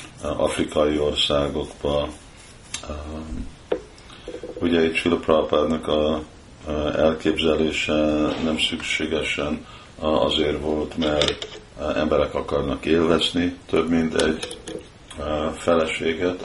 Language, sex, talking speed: Hungarian, male, 70 wpm